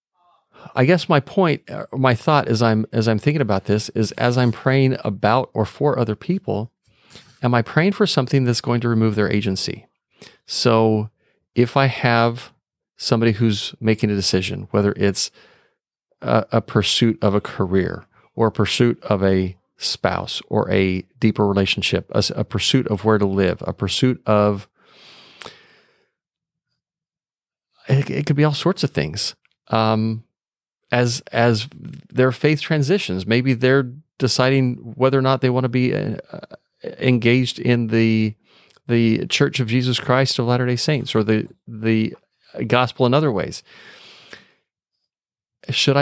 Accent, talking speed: American, 150 wpm